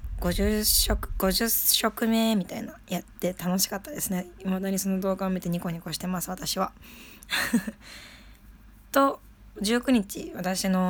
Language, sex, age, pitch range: Japanese, female, 20-39, 165-200 Hz